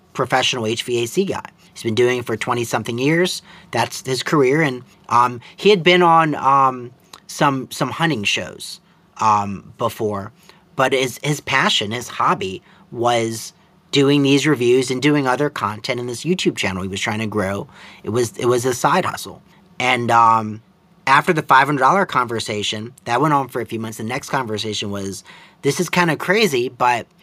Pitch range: 115-160 Hz